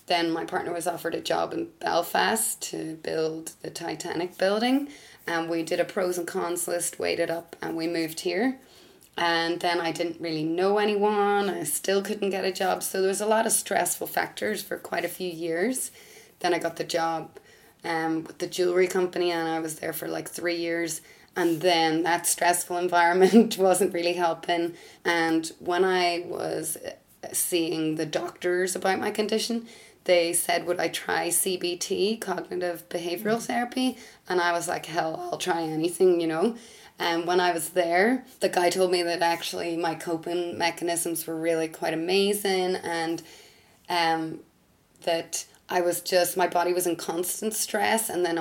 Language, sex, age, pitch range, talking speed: English, female, 20-39, 170-190 Hz, 175 wpm